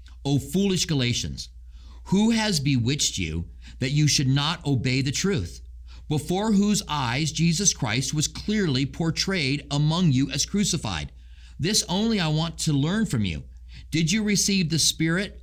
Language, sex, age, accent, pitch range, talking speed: English, male, 50-69, American, 110-160 Hz, 150 wpm